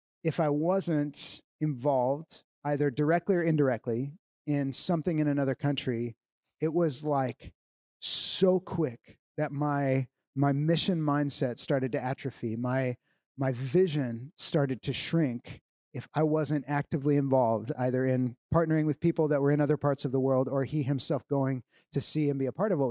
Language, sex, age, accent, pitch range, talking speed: English, male, 30-49, American, 135-160 Hz, 160 wpm